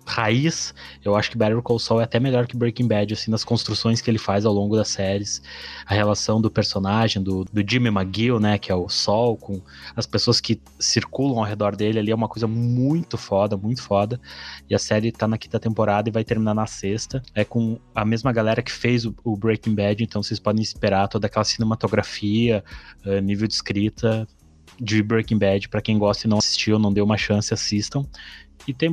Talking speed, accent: 210 wpm, Brazilian